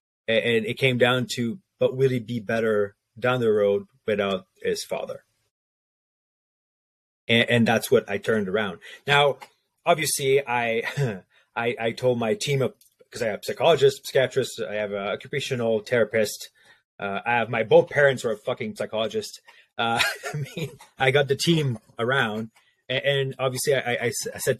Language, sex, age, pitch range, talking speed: English, male, 30-49, 110-140 Hz, 165 wpm